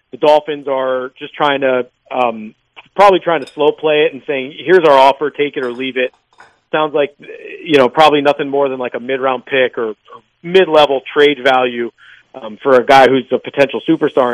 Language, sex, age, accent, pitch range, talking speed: English, male, 40-59, American, 130-160 Hz, 200 wpm